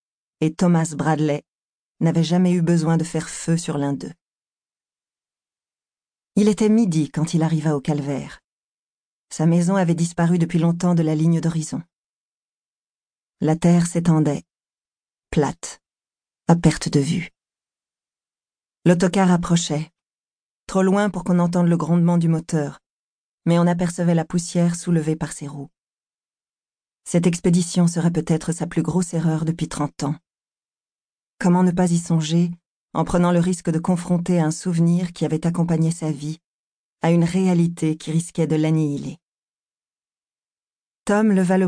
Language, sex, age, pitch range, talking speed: French, female, 40-59, 160-175 Hz, 140 wpm